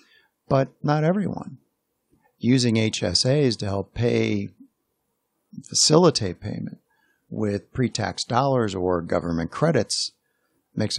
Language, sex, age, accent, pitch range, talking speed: English, male, 50-69, American, 105-145 Hz, 95 wpm